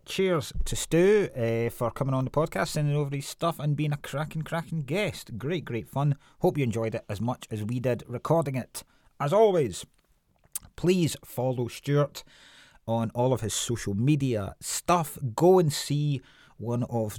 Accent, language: British, English